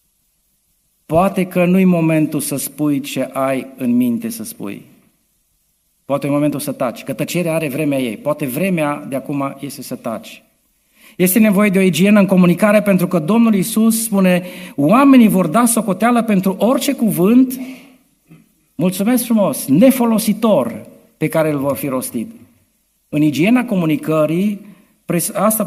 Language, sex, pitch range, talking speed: Romanian, male, 145-205 Hz, 140 wpm